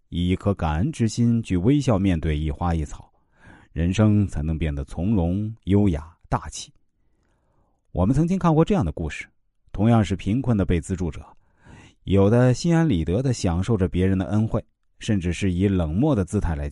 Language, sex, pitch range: Chinese, male, 85-125 Hz